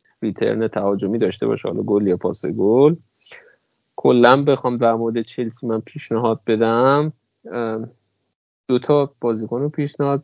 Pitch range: 115-145 Hz